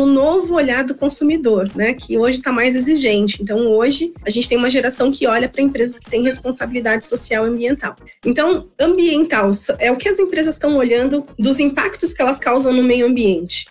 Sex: female